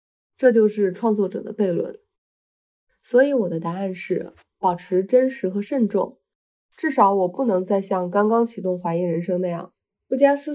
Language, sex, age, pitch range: Chinese, female, 20-39, 185-230 Hz